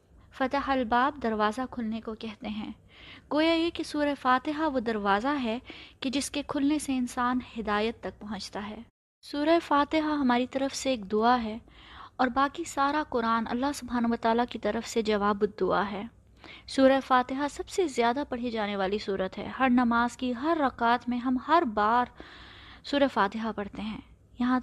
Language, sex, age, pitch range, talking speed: Urdu, female, 20-39, 230-285 Hz, 170 wpm